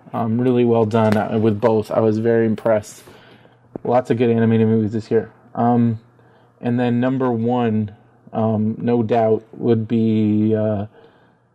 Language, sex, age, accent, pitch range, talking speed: English, male, 20-39, American, 115-125 Hz, 145 wpm